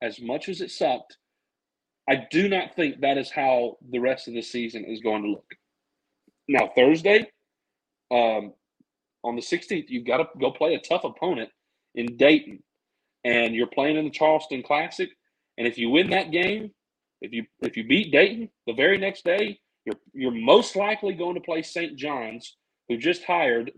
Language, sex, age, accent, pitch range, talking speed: English, male, 40-59, American, 120-190 Hz, 180 wpm